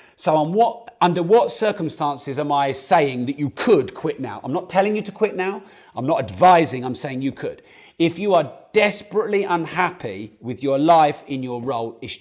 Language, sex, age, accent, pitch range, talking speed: English, male, 40-59, British, 135-180 Hz, 185 wpm